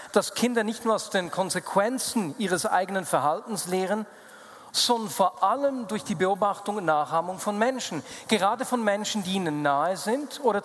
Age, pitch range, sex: 40-59, 175-220 Hz, male